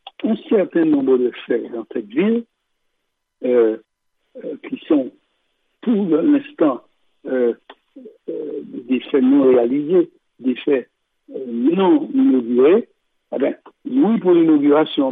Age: 60-79